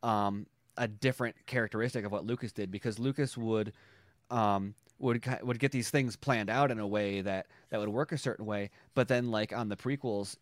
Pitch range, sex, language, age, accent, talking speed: 105-130 Hz, male, English, 30-49, American, 200 wpm